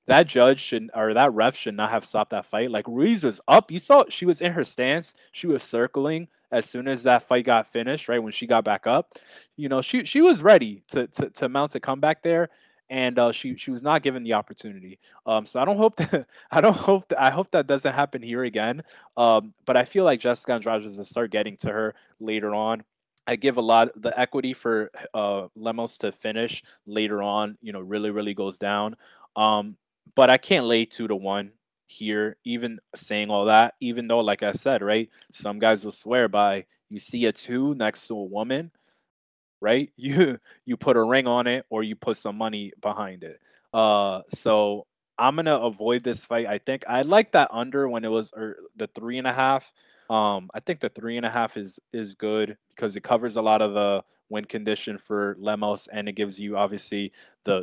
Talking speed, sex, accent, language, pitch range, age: 220 wpm, male, American, English, 105-130 Hz, 20-39